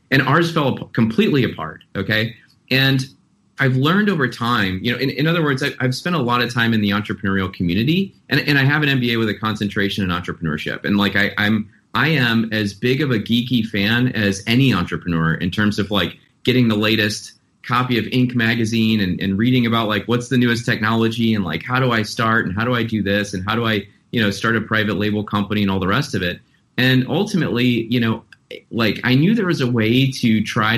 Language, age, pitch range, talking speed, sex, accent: English, 30-49, 105-130 Hz, 220 wpm, male, American